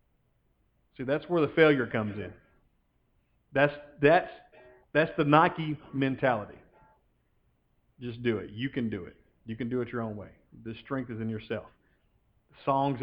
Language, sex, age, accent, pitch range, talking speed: English, male, 40-59, American, 125-185 Hz, 145 wpm